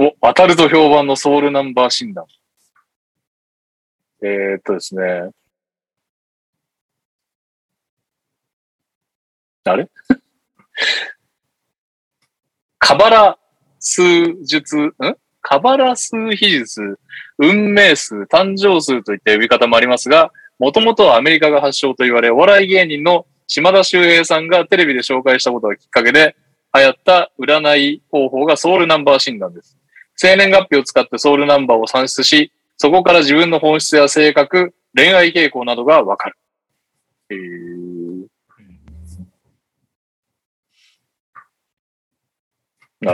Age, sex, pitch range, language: 20-39, male, 120-175 Hz, Japanese